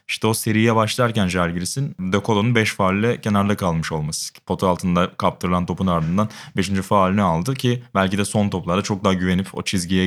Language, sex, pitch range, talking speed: Turkish, male, 90-115 Hz, 175 wpm